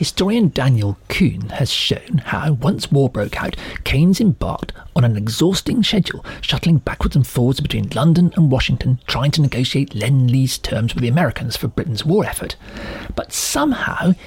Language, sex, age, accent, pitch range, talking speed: English, male, 40-59, British, 125-180 Hz, 160 wpm